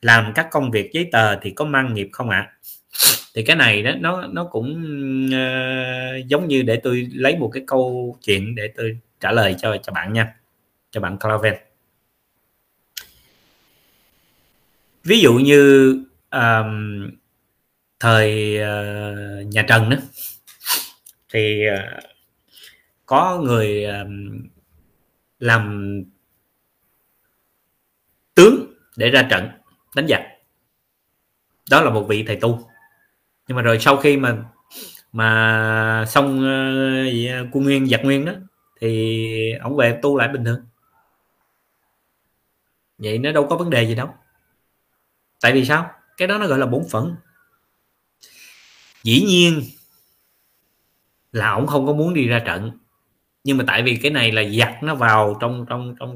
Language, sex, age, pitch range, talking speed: Vietnamese, male, 20-39, 110-135 Hz, 140 wpm